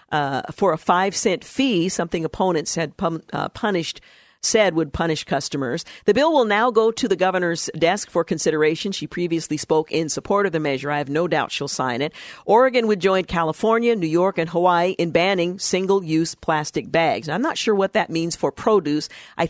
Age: 50-69